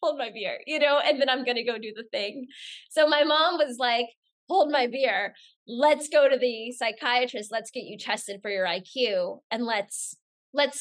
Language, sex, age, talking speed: English, female, 20-39, 205 wpm